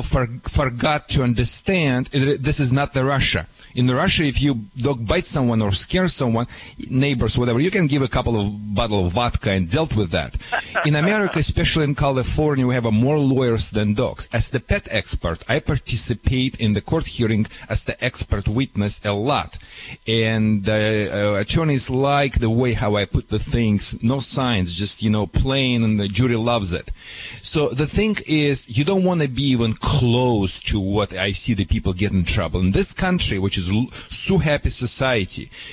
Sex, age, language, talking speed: male, 40-59, English, 190 wpm